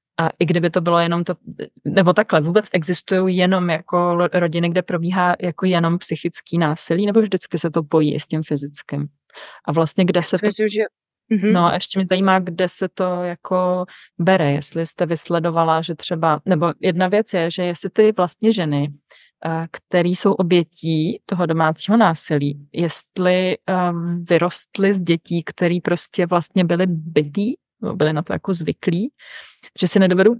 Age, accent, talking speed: 30-49, native, 165 wpm